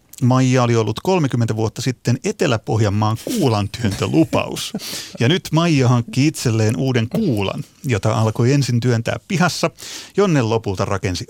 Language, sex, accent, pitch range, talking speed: Finnish, male, native, 110-140 Hz, 120 wpm